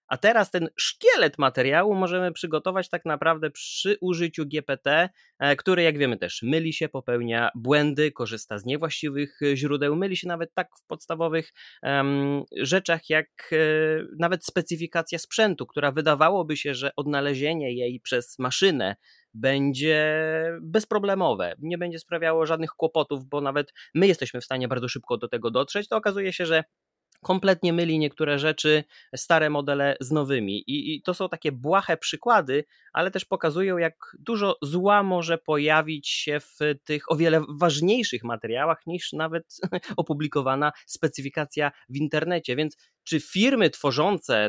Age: 30-49